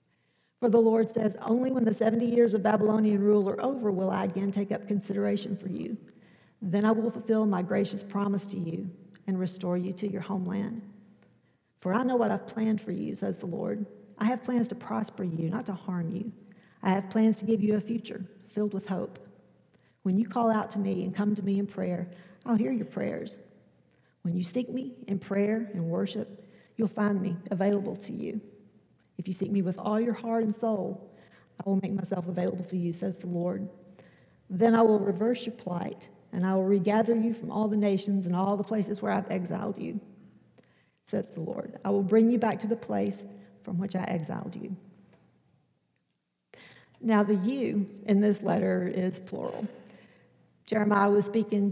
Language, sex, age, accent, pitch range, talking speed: English, female, 50-69, American, 190-220 Hz, 195 wpm